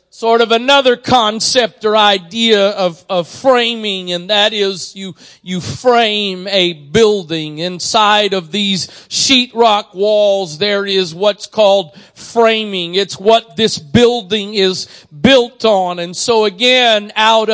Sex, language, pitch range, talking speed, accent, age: male, English, 200-245 Hz, 135 wpm, American, 40-59